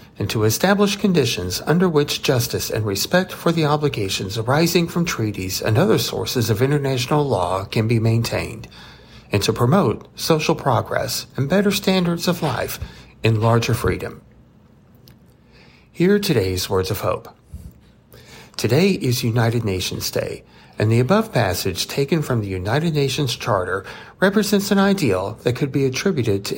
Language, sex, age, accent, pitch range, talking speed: English, male, 60-79, American, 110-170 Hz, 150 wpm